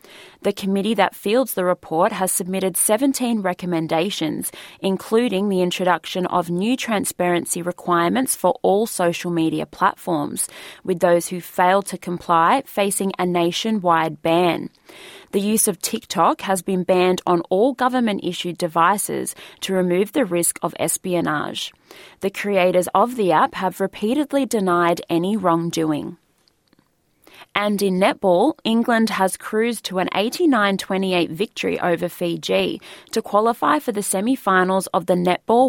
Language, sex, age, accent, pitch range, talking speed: English, female, 20-39, Australian, 175-210 Hz, 135 wpm